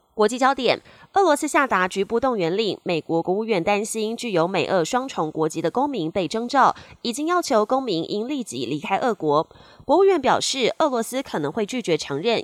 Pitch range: 175-250 Hz